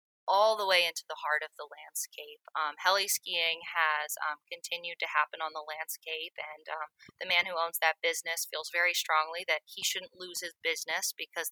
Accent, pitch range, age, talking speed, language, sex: American, 160-190 Hz, 20-39, 200 wpm, English, female